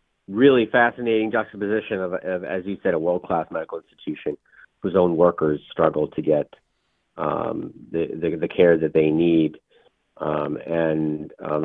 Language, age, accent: English, 40-59, American